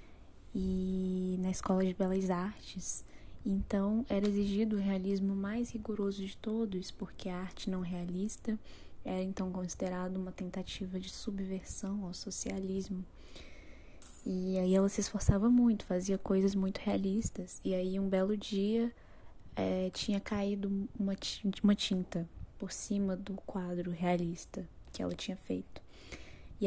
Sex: female